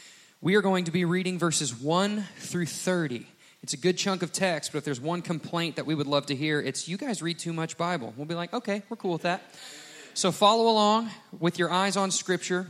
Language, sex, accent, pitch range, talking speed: English, male, American, 135-170 Hz, 235 wpm